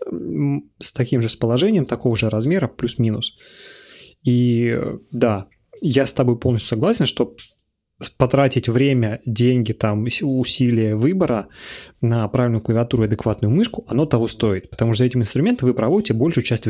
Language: Russian